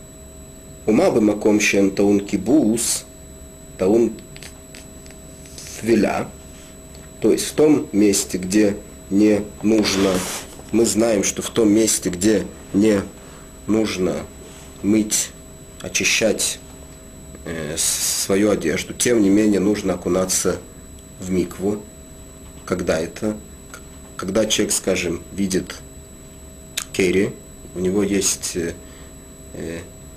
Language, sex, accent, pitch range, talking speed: Russian, male, native, 80-105 Hz, 80 wpm